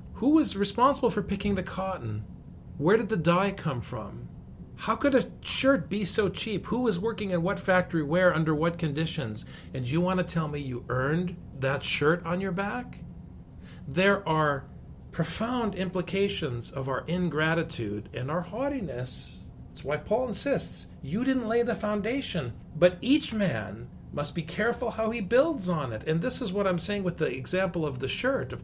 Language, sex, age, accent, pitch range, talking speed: English, male, 40-59, American, 135-200 Hz, 180 wpm